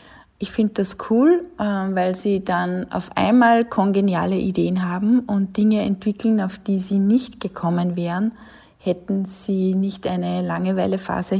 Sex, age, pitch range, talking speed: female, 20-39, 180-220 Hz, 135 wpm